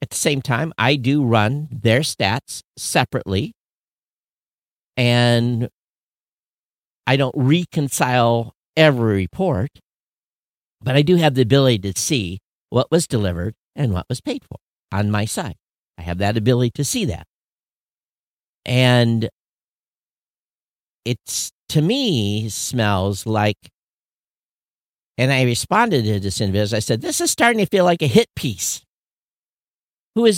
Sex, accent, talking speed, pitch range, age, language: male, American, 130 wpm, 100-150 Hz, 50-69, English